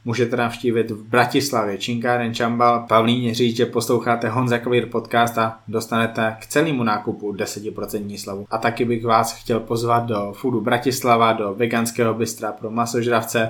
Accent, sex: native, male